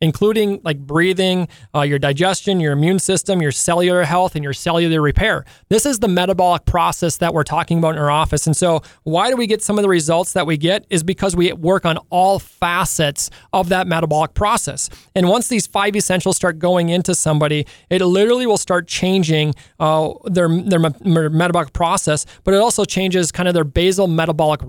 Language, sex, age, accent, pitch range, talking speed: English, male, 30-49, American, 160-190 Hz, 195 wpm